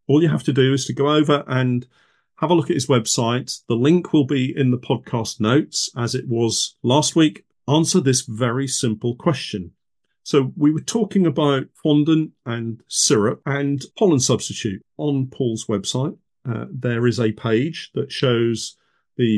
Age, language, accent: 40-59, English, British